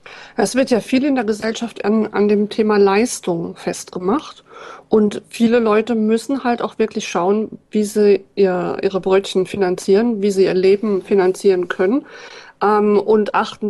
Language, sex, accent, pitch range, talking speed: German, female, German, 195-225 Hz, 155 wpm